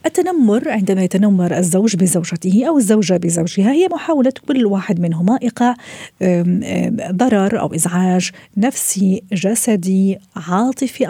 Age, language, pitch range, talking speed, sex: 50-69, Arabic, 175-230 Hz, 110 wpm, female